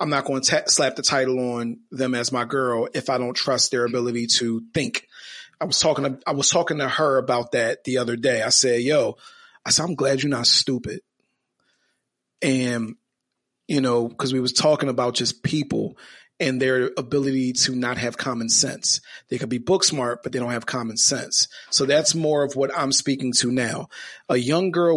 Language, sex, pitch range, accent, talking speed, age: English, male, 125-155 Hz, American, 205 wpm, 40-59